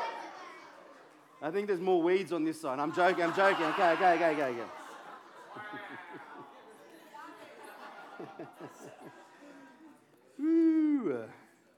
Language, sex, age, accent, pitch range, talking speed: English, male, 40-59, Australian, 180-270 Hz, 90 wpm